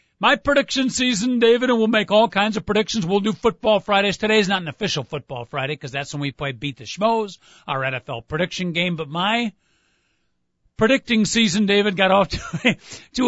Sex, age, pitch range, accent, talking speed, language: male, 50-69, 170-230 Hz, American, 185 wpm, English